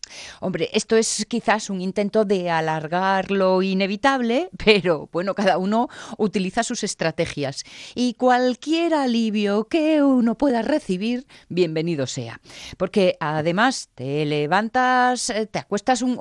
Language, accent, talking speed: Spanish, Spanish, 120 wpm